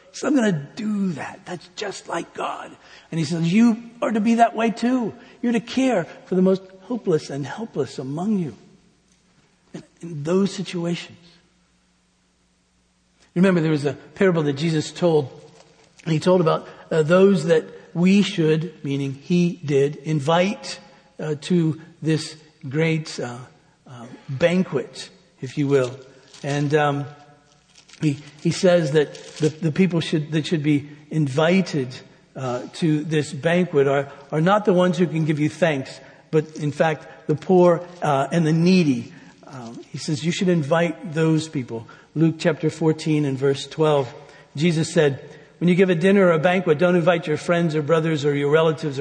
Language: English